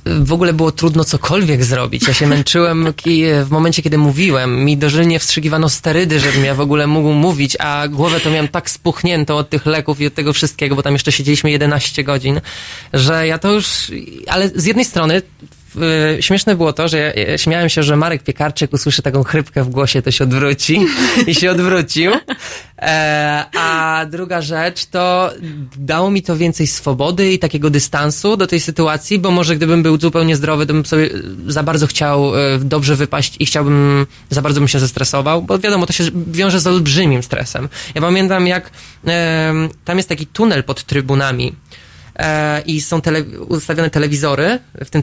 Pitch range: 145-165 Hz